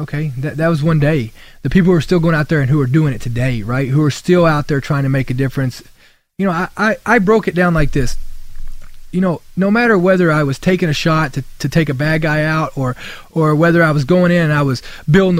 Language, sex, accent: English, male, American